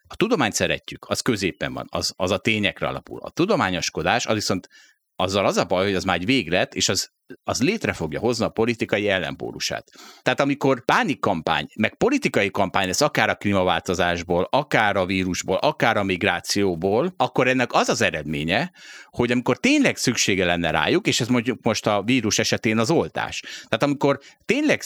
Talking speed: 175 wpm